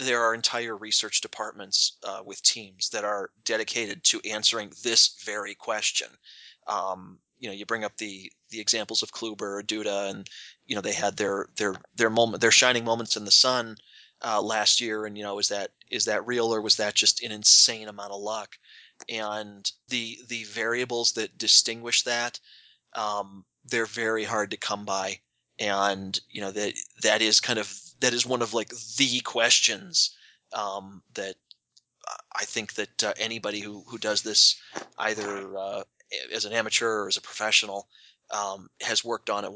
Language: English